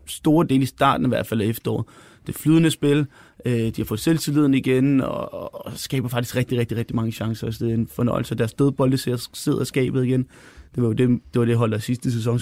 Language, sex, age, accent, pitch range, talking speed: Danish, male, 30-49, native, 120-150 Hz, 225 wpm